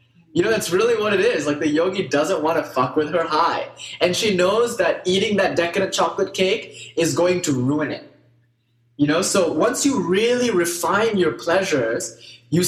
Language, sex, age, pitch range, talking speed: English, male, 20-39, 135-185 Hz, 195 wpm